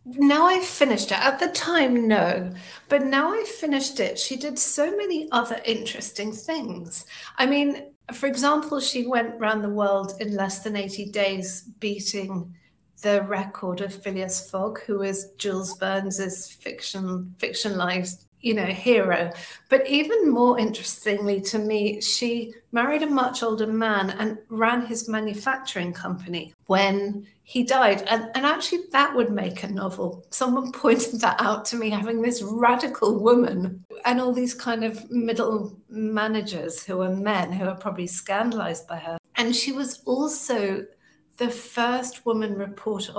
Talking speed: 155 wpm